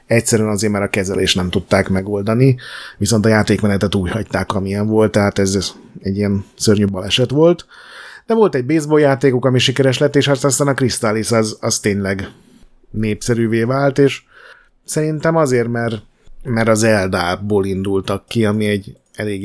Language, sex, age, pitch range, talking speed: Hungarian, male, 30-49, 100-125 Hz, 160 wpm